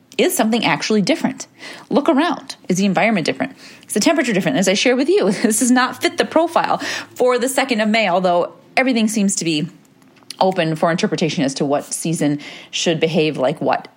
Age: 30-49